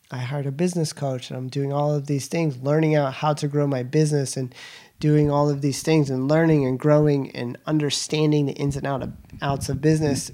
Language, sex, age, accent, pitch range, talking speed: English, male, 30-49, American, 135-155 Hz, 215 wpm